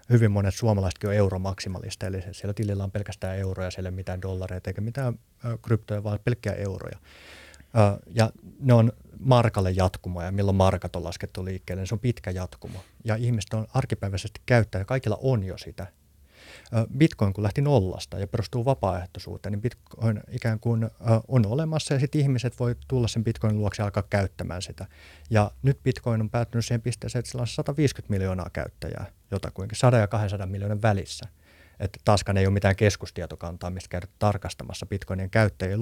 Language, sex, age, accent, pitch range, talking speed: Finnish, male, 30-49, native, 95-115 Hz, 170 wpm